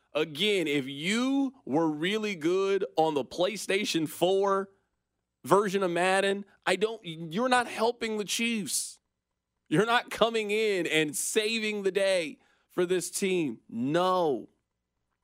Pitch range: 135-220 Hz